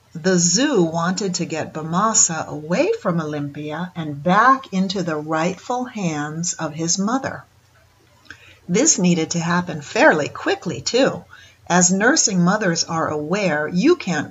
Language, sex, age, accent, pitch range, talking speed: English, female, 50-69, American, 155-195 Hz, 135 wpm